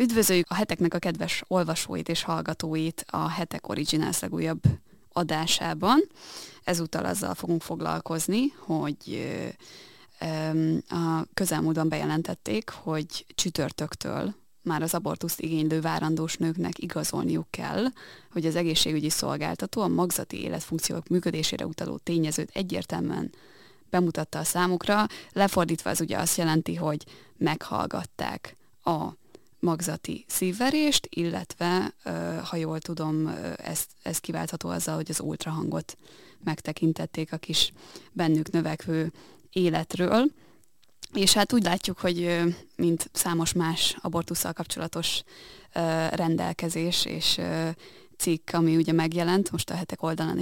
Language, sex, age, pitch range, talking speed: Hungarian, female, 20-39, 160-180 Hz, 110 wpm